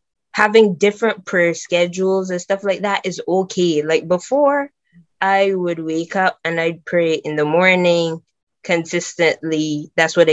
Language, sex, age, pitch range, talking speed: English, female, 20-39, 170-225 Hz, 145 wpm